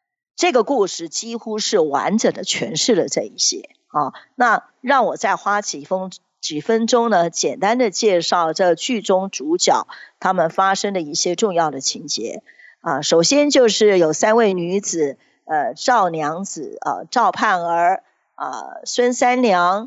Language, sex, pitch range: Chinese, female, 175-255 Hz